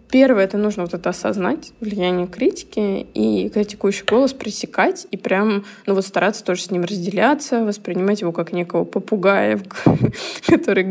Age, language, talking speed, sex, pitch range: 20-39, Russian, 155 wpm, female, 175-225 Hz